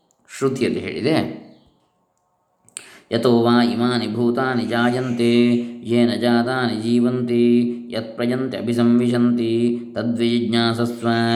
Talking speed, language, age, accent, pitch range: 75 wpm, Kannada, 20-39, native, 115-125 Hz